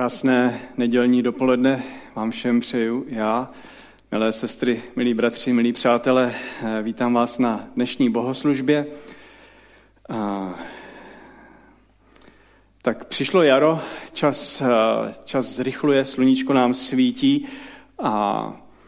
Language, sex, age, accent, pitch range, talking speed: Czech, male, 40-59, native, 115-145 Hz, 90 wpm